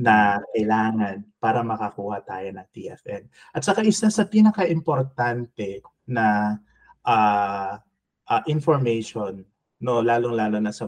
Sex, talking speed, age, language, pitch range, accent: male, 110 wpm, 20-39, Filipino, 105-130 Hz, native